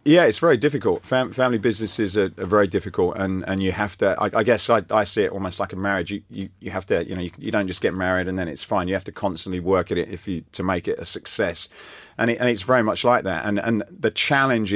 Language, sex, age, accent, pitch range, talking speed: English, male, 30-49, British, 95-110 Hz, 285 wpm